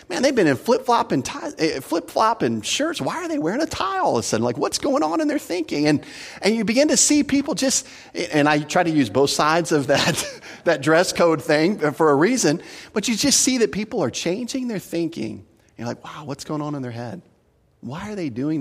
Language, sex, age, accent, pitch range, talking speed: English, male, 40-59, American, 110-155 Hz, 230 wpm